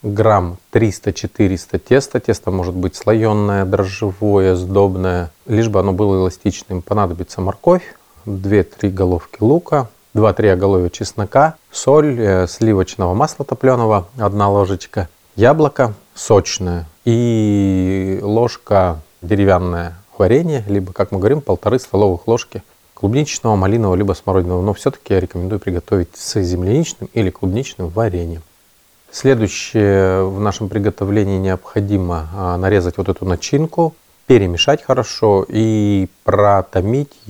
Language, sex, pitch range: Russian, male, 95-115 Hz